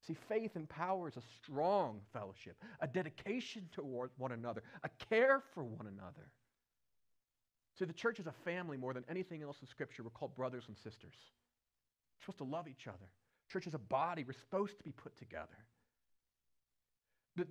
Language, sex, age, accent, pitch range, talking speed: English, male, 40-59, American, 145-215 Hz, 170 wpm